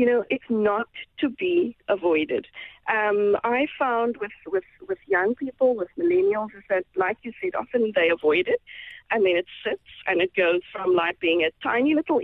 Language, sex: English, female